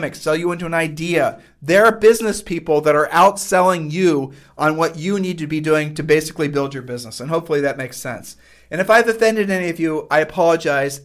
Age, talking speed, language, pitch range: 40-59, 210 wpm, English, 150-195 Hz